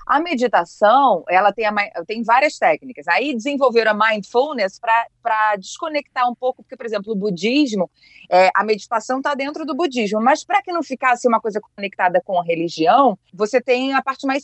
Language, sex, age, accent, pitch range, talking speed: Portuguese, female, 30-49, Brazilian, 215-280 Hz, 175 wpm